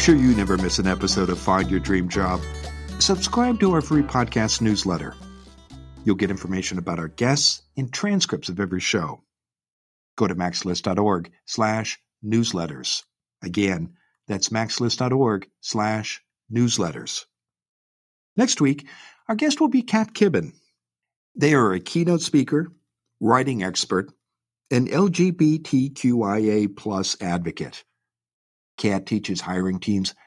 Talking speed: 110 wpm